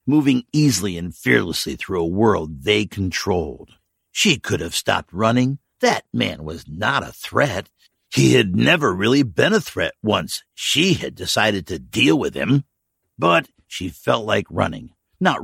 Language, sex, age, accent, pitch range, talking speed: English, male, 60-79, American, 90-125 Hz, 160 wpm